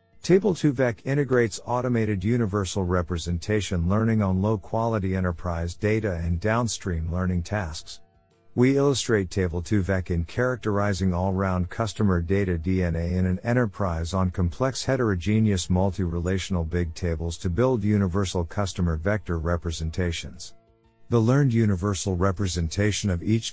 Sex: male